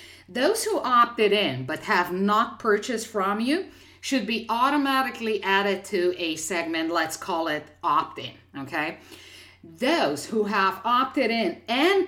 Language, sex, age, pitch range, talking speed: English, female, 50-69, 175-255 Hz, 140 wpm